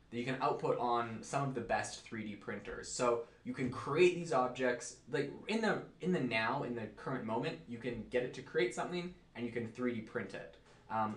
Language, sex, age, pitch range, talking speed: English, male, 20-39, 105-125 Hz, 220 wpm